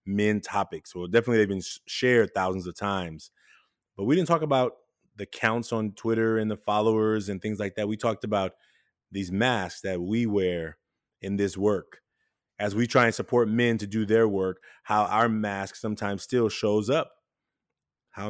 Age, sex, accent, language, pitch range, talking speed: 20-39, male, American, English, 95-115 Hz, 180 wpm